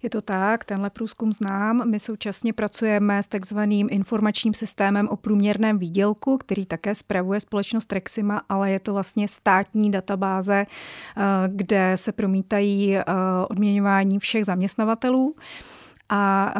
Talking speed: 125 wpm